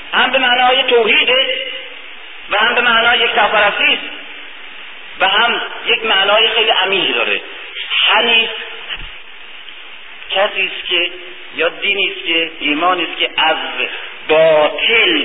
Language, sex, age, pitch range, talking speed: Persian, male, 50-69, 210-310 Hz, 100 wpm